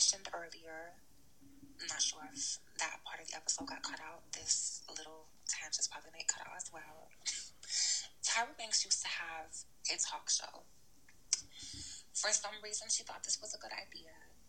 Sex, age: female, 20-39